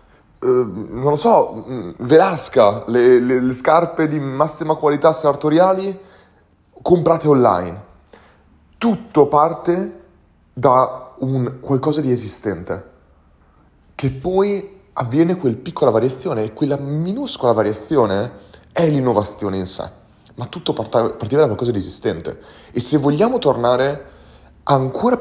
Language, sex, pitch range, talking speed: Italian, male, 95-145 Hz, 115 wpm